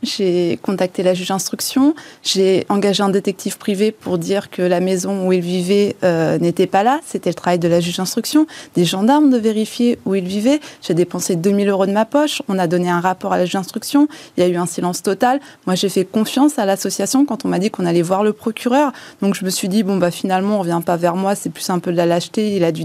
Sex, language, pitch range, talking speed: female, French, 180-220 Hz, 255 wpm